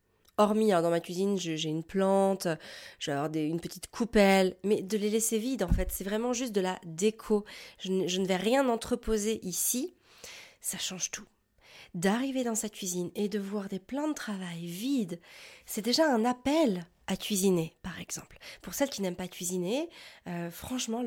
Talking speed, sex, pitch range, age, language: 180 wpm, female, 180-240 Hz, 30-49, French